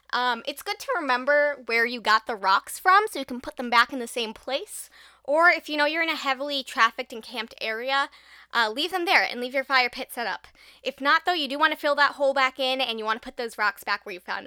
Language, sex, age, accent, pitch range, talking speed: English, female, 20-39, American, 225-295 Hz, 280 wpm